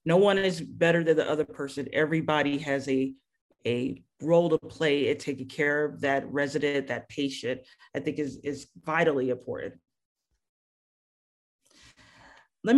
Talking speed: 140 wpm